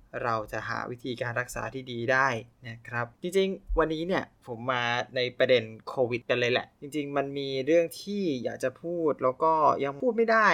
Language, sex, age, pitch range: Thai, male, 20-39, 130-170 Hz